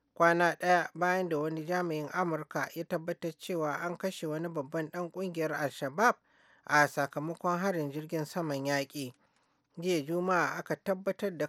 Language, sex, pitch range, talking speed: English, male, 150-180 Hz, 145 wpm